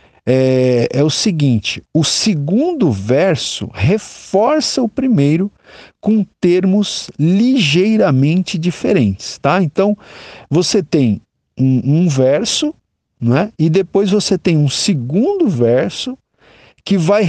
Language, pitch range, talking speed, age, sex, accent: Portuguese, 130-205 Hz, 110 wpm, 50-69, male, Brazilian